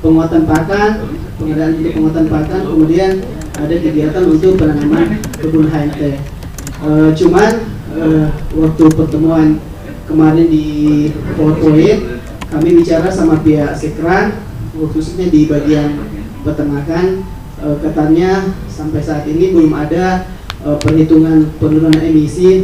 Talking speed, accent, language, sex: 110 wpm, native, Indonesian, male